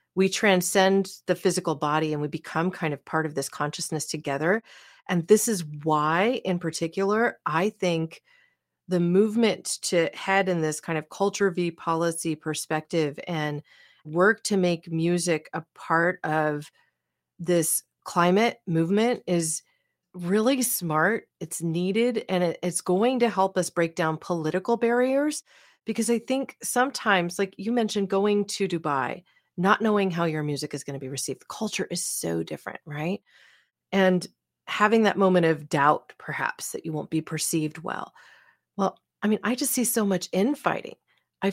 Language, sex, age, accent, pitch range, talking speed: English, female, 40-59, American, 160-205 Hz, 160 wpm